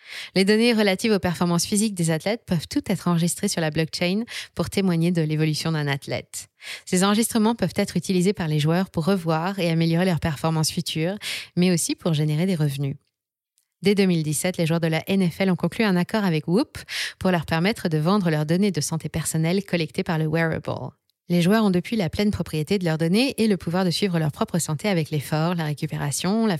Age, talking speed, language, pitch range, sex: 20-39, 210 wpm, French, 160-200 Hz, female